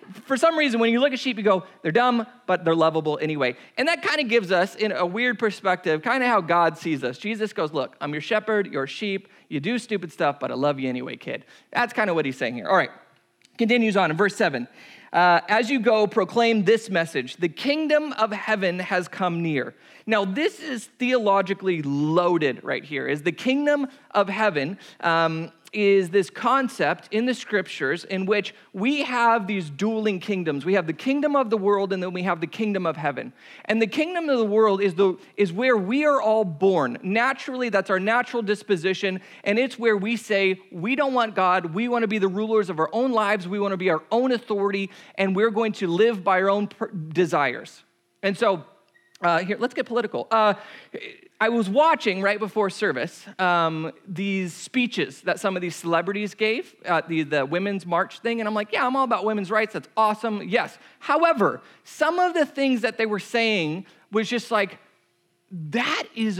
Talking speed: 205 wpm